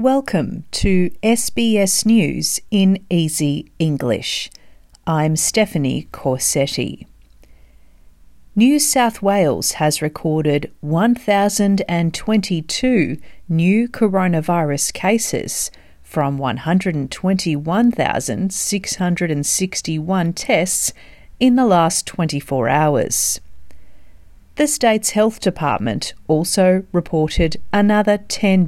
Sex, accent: female, Australian